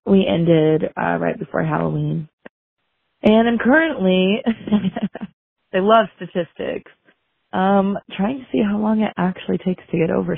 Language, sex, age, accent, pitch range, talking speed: English, female, 20-39, American, 160-215 Hz, 140 wpm